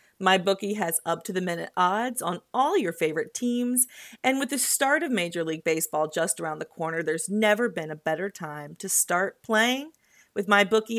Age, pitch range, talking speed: 30-49, 165-235 Hz, 175 wpm